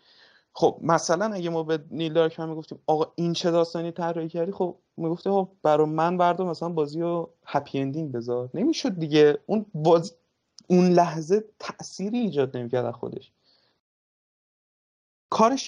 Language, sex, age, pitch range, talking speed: Persian, male, 30-49, 135-195 Hz, 140 wpm